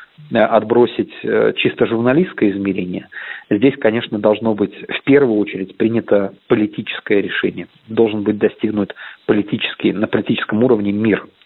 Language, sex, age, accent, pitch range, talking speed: Russian, male, 40-59, native, 105-120 Hz, 115 wpm